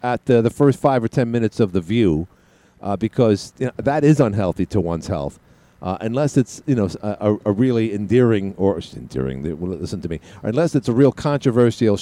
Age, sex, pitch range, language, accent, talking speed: 50-69, male, 95-130 Hz, English, American, 190 wpm